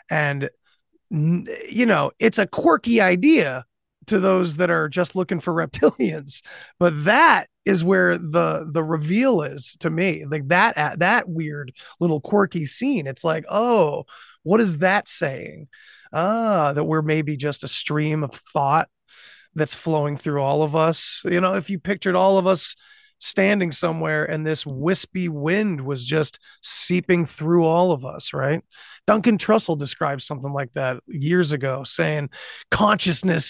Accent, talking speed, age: American, 155 wpm, 20-39